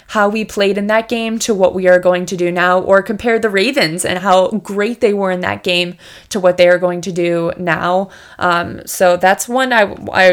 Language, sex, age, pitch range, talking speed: English, female, 20-39, 180-215 Hz, 230 wpm